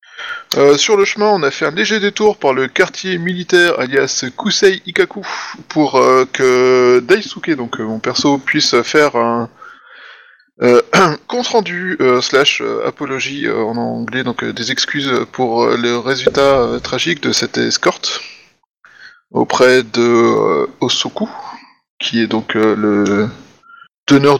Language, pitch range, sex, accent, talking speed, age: French, 120-155 Hz, male, French, 150 wpm, 20-39